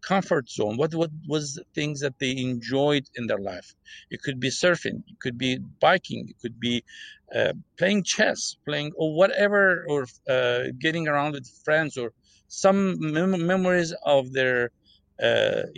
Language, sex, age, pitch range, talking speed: English, male, 50-69, 130-175 Hz, 160 wpm